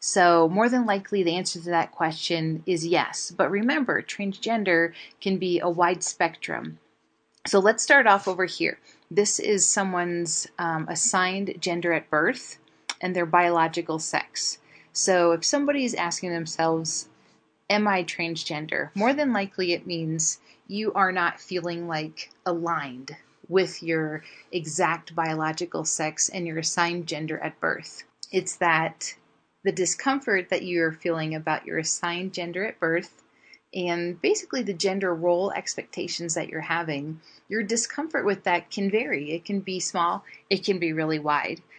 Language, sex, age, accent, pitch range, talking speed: English, female, 30-49, American, 165-200 Hz, 150 wpm